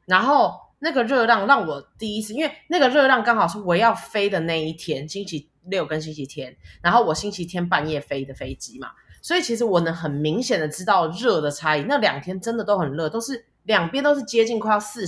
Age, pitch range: 20-39, 155-250 Hz